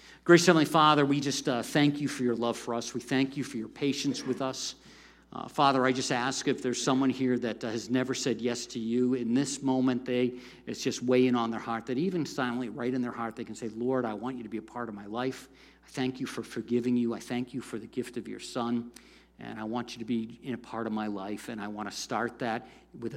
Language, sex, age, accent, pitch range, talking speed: English, male, 50-69, American, 115-130 Hz, 265 wpm